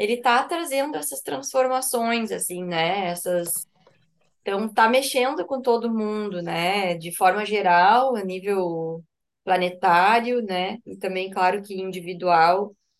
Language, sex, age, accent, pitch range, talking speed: Portuguese, female, 20-39, Brazilian, 185-235 Hz, 125 wpm